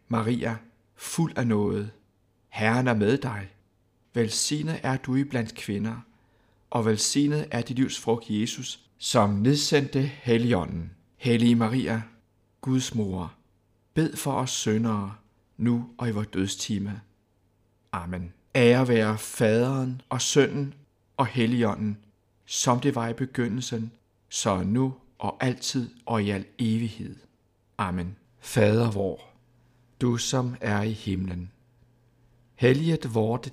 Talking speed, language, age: 120 wpm, Danish, 60-79